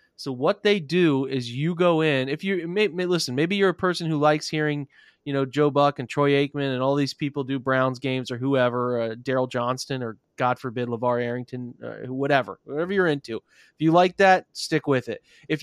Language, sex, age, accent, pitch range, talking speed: English, male, 30-49, American, 130-155 Hz, 215 wpm